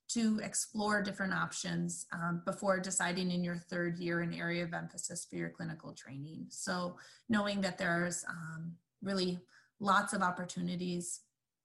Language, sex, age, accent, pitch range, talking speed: English, female, 20-39, American, 175-225 Hz, 145 wpm